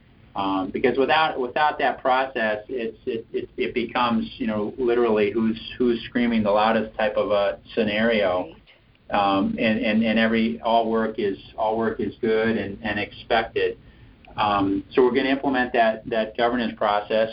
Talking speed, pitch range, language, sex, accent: 165 wpm, 110-125 Hz, English, male, American